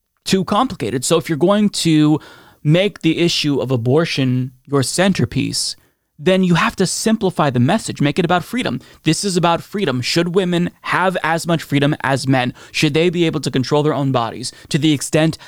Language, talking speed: English, 190 wpm